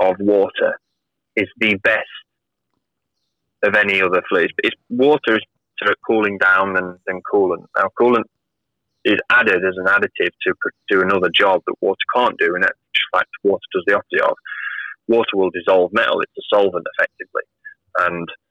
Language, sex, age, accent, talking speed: English, male, 20-39, British, 160 wpm